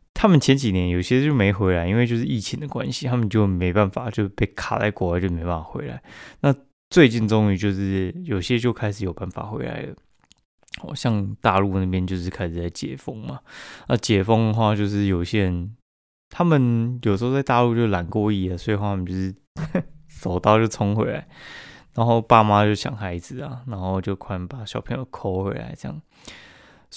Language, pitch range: Chinese, 95-120 Hz